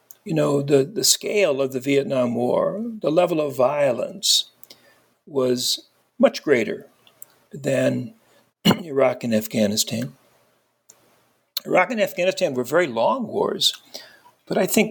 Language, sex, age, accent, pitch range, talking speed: English, male, 60-79, American, 135-200 Hz, 120 wpm